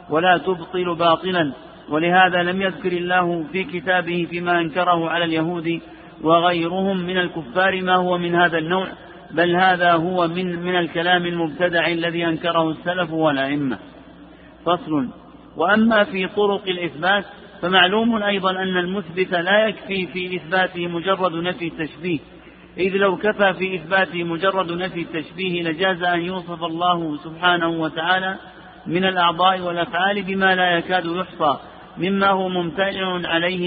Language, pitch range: Arabic, 170-185 Hz